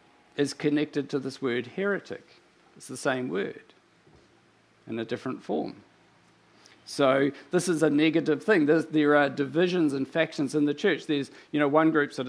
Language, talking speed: English, 170 wpm